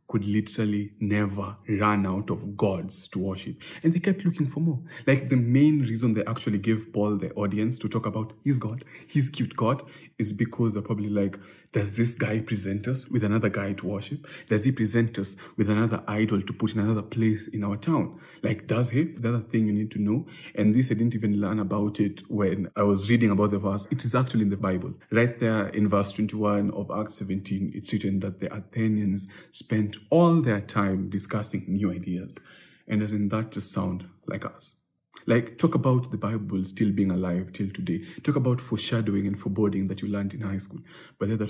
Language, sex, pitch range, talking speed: English, male, 100-120 Hz, 210 wpm